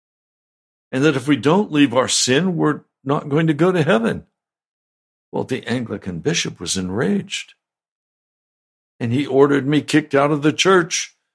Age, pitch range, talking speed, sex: 60-79, 110-160 Hz, 160 wpm, male